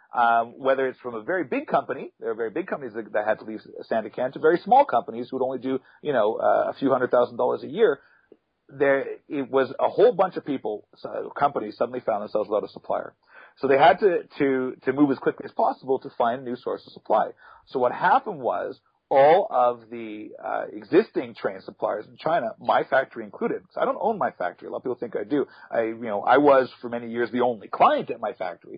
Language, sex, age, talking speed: English, male, 40-59, 240 wpm